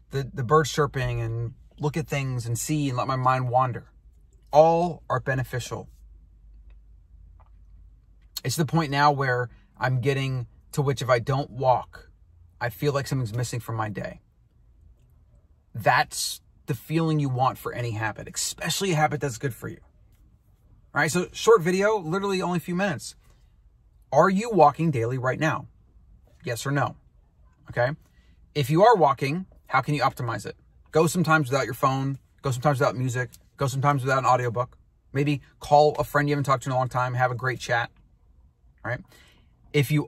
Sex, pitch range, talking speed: male, 105-145 Hz, 175 wpm